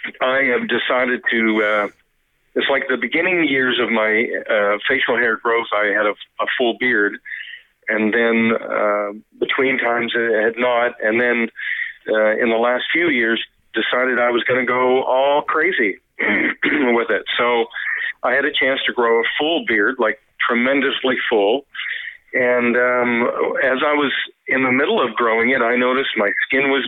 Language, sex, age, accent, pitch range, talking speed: English, male, 50-69, American, 115-130 Hz, 170 wpm